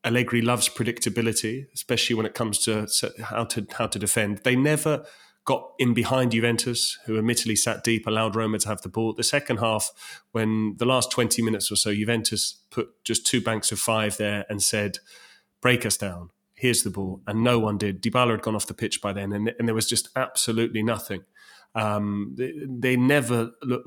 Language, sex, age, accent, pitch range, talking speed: English, male, 30-49, British, 110-120 Hz, 195 wpm